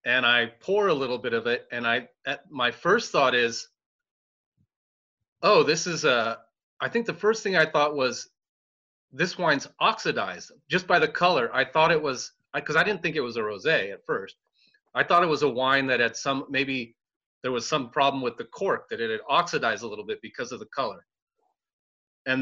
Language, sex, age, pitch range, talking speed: English, male, 30-49, 120-190 Hz, 205 wpm